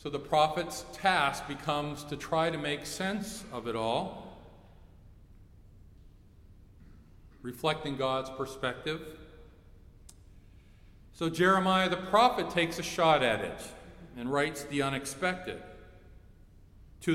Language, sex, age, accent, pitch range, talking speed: English, male, 50-69, American, 95-145 Hz, 105 wpm